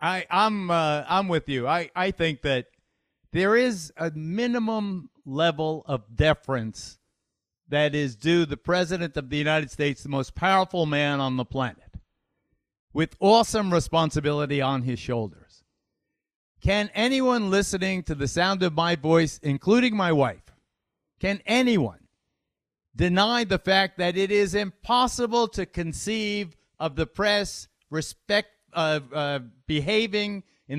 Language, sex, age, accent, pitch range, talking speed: English, male, 50-69, American, 150-205 Hz, 140 wpm